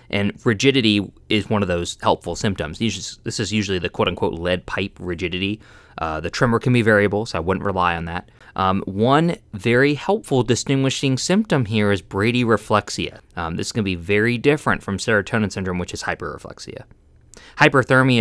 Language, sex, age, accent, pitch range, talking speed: English, male, 20-39, American, 95-120 Hz, 170 wpm